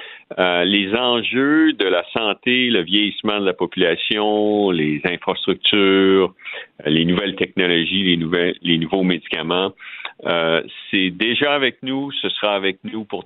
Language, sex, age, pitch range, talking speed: French, male, 50-69, 90-120 Hz, 145 wpm